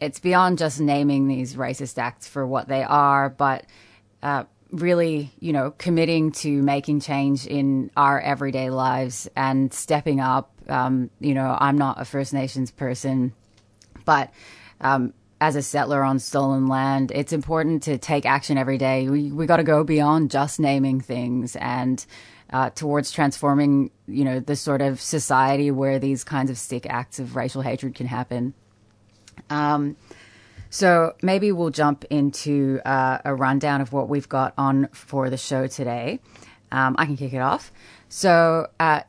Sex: female